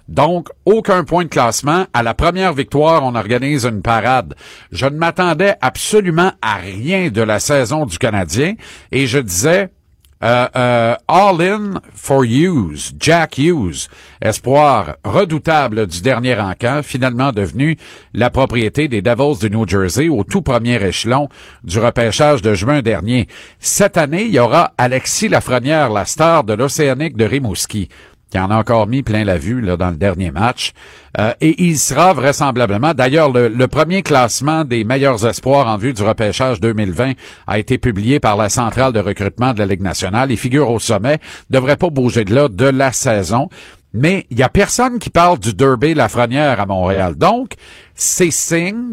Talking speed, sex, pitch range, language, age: 175 wpm, male, 110-155 Hz, French, 50-69